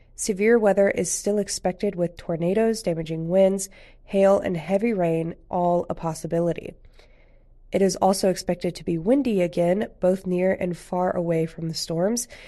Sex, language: female, English